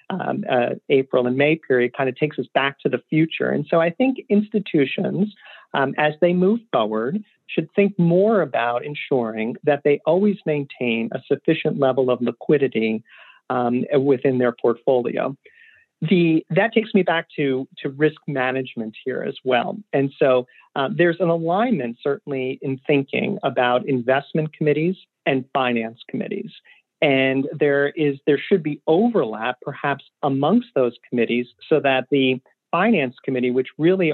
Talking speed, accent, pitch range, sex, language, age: 150 wpm, American, 125-160 Hz, male, English, 40-59